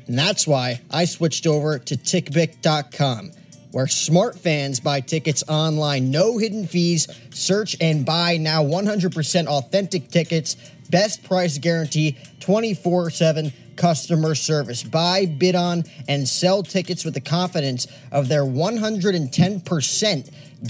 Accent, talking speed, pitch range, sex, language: American, 120 wpm, 145-180 Hz, male, English